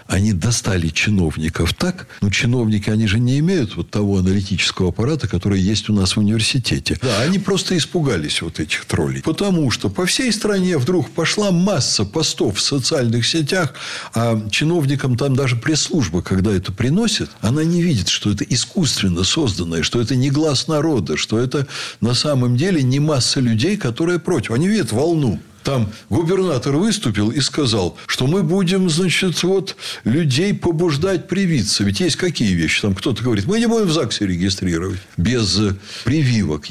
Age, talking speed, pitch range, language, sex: 60-79, 165 wpm, 105-165 Hz, Russian, male